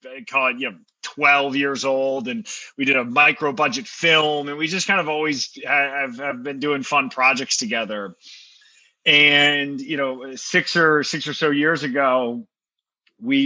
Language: English